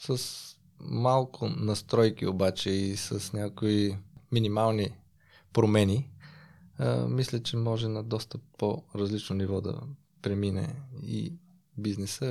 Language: Bulgarian